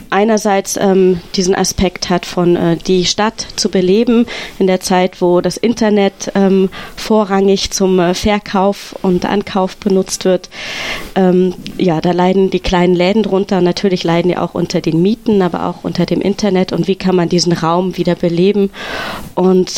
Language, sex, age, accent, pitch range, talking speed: German, female, 30-49, German, 170-205 Hz, 165 wpm